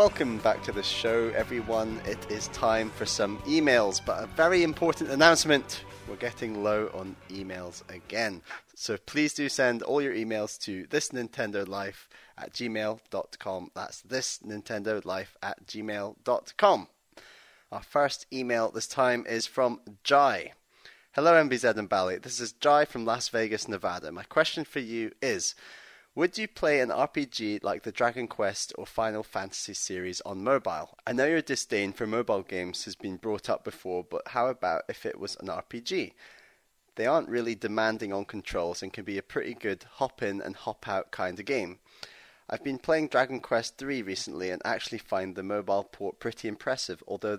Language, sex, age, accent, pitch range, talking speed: English, male, 30-49, British, 100-130 Hz, 165 wpm